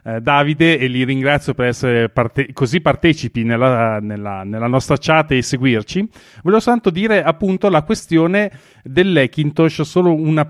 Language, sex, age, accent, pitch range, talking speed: Italian, male, 40-59, native, 130-180 Hz, 145 wpm